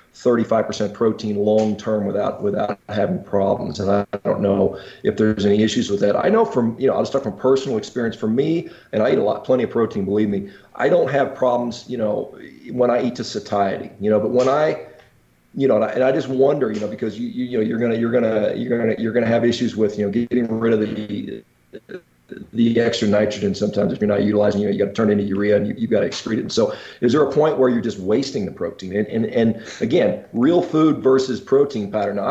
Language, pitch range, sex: English, 105-125 Hz, male